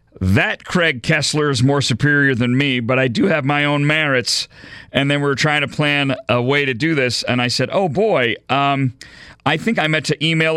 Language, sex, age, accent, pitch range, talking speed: English, male, 40-59, American, 125-165 Hz, 220 wpm